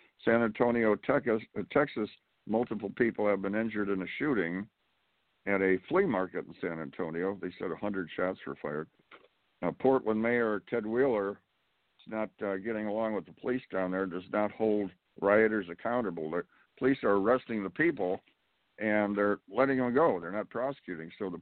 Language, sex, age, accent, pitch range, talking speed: English, male, 60-79, American, 100-130 Hz, 170 wpm